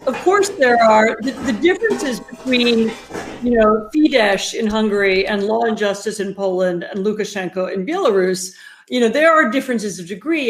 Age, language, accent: 50-69, English, American